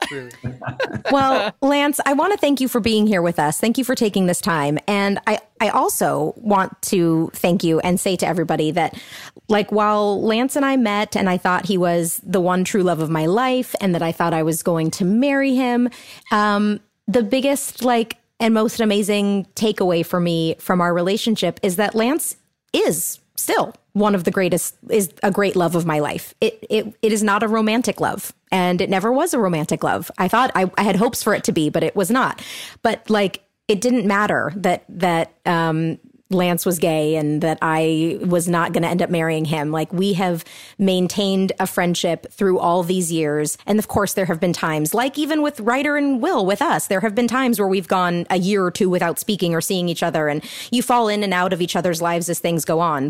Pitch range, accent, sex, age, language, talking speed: 170-215 Hz, American, female, 30-49, English, 220 wpm